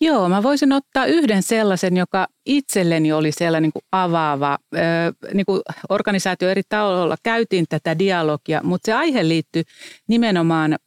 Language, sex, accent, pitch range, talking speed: Finnish, female, native, 160-205 Hz, 135 wpm